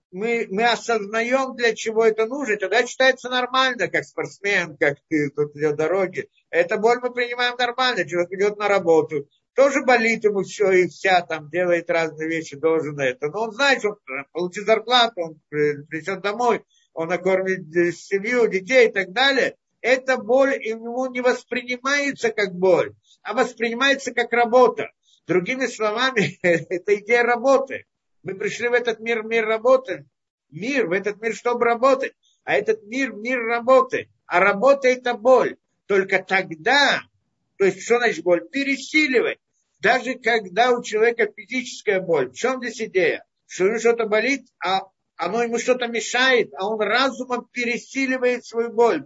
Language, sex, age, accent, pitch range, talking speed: Russian, male, 50-69, native, 190-255 Hz, 155 wpm